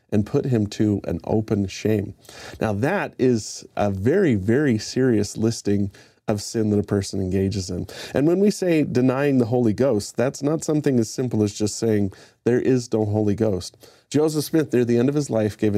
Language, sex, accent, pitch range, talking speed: English, male, American, 105-130 Hz, 200 wpm